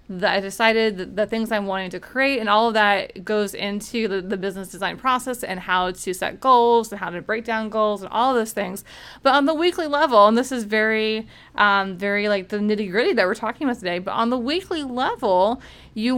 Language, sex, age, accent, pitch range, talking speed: English, female, 30-49, American, 210-260 Hz, 225 wpm